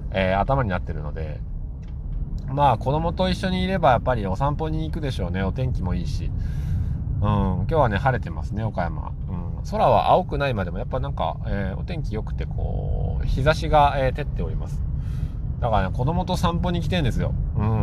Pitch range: 90-130 Hz